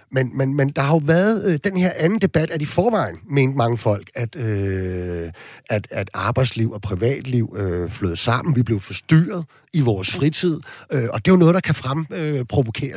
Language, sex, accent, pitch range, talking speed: Danish, male, native, 120-165 Hz, 200 wpm